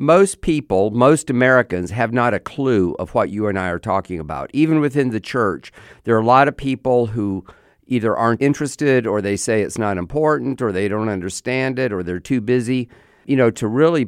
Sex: male